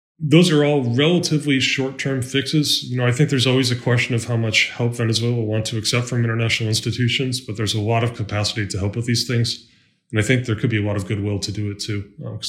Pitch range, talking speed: 115-140 Hz, 255 wpm